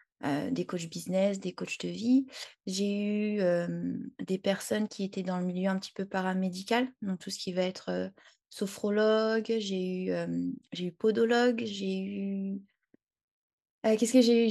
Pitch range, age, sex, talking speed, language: 185-220 Hz, 20-39, female, 180 wpm, French